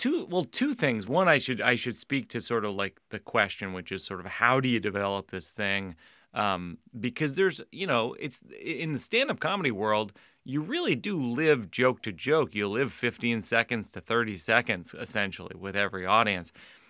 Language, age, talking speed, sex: English, 30-49, 195 wpm, male